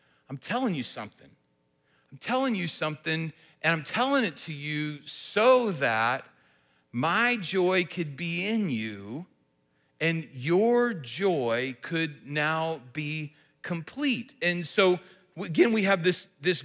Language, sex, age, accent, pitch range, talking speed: English, male, 40-59, American, 140-190 Hz, 130 wpm